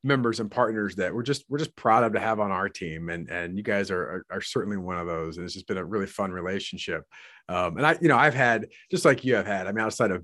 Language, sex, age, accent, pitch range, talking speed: English, male, 30-49, American, 100-140 Hz, 295 wpm